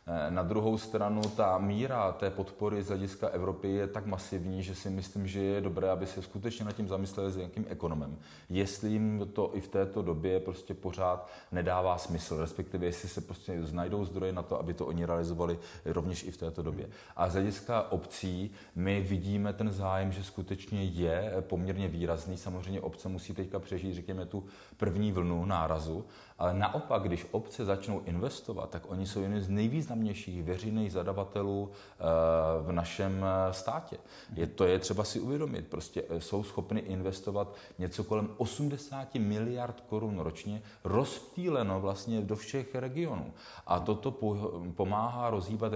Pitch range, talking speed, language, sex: 95-110 Hz, 155 wpm, Czech, male